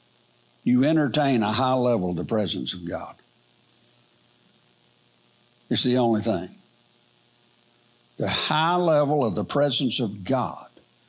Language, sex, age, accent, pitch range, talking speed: English, male, 60-79, American, 120-175 Hz, 120 wpm